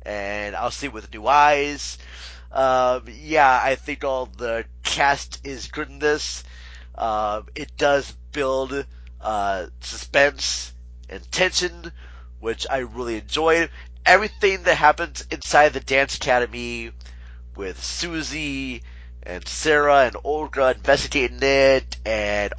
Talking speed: 120 wpm